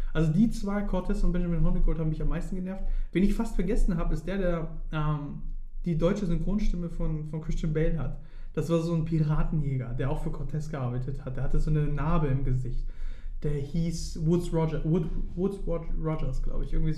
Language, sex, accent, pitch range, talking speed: German, male, German, 150-170 Hz, 205 wpm